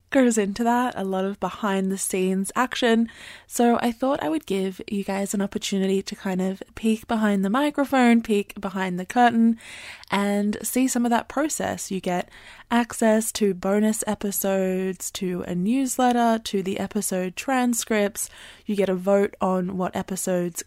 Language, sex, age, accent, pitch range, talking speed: English, female, 20-39, Australian, 190-230 Hz, 165 wpm